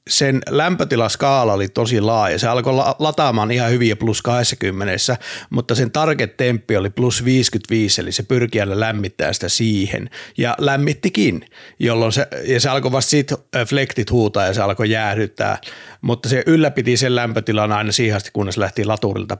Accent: native